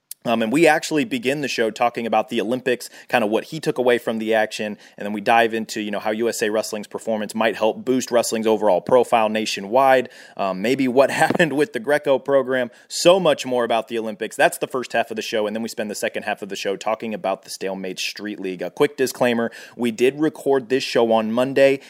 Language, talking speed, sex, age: English, 235 wpm, male, 30-49